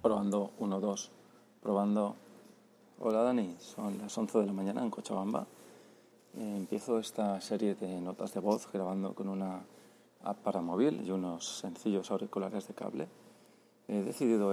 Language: Spanish